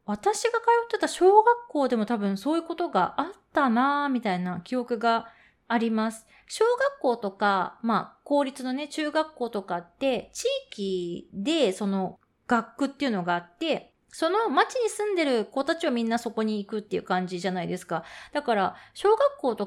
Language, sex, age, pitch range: Japanese, female, 20-39, 195-300 Hz